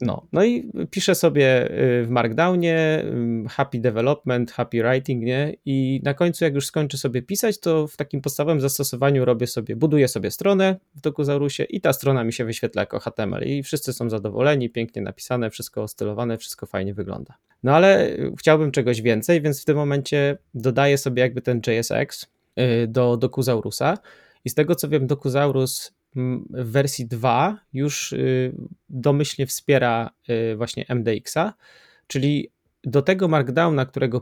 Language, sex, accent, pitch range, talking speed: Polish, male, native, 120-145 Hz, 150 wpm